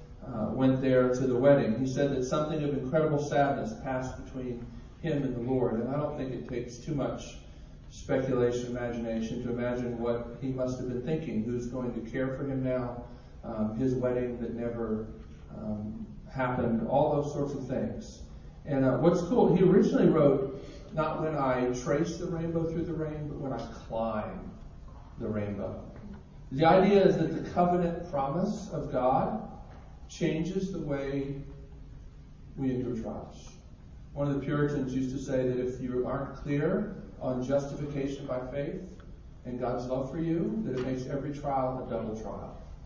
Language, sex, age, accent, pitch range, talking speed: English, male, 40-59, American, 120-150 Hz, 170 wpm